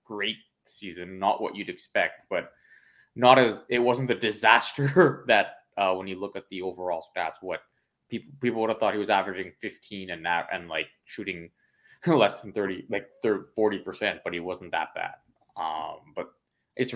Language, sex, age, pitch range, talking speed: English, male, 20-39, 90-105 Hz, 185 wpm